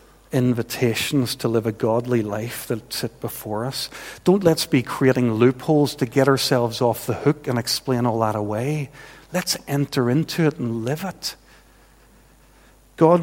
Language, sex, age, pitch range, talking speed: English, male, 50-69, 115-140 Hz, 155 wpm